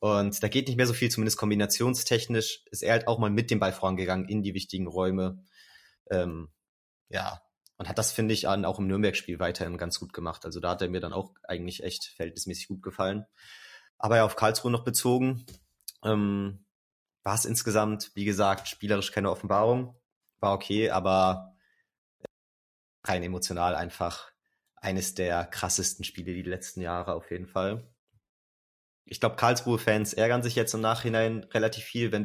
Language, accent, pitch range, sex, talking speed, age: German, German, 95-115 Hz, male, 170 wpm, 30-49